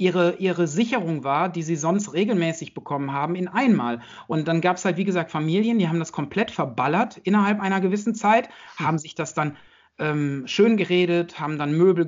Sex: male